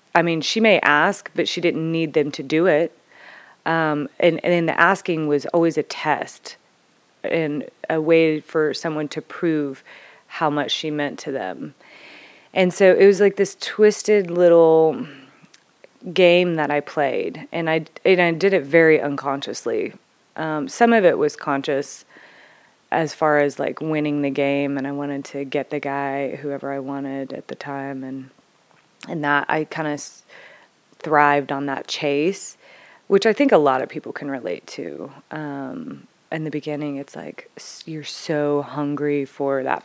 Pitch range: 145-170 Hz